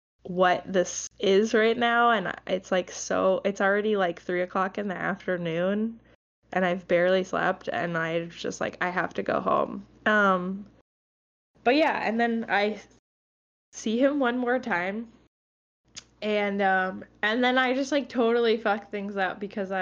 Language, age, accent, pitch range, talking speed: English, 10-29, American, 180-210 Hz, 160 wpm